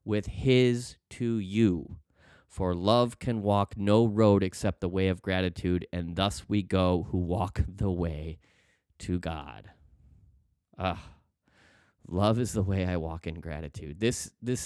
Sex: male